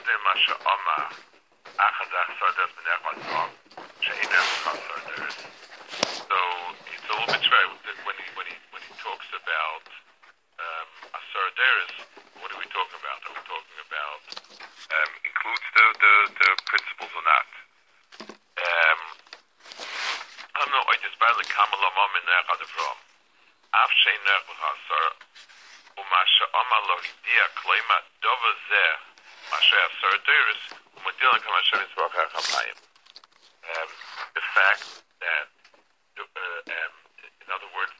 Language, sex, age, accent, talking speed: English, male, 60-79, American, 80 wpm